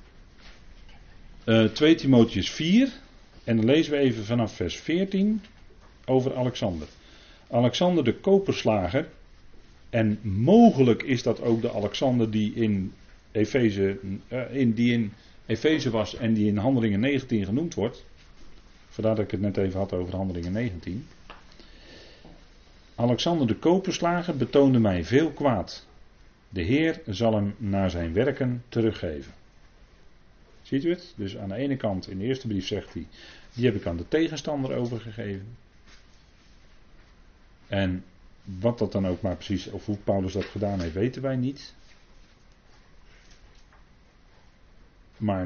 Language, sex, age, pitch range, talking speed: Dutch, male, 40-59, 95-120 Hz, 130 wpm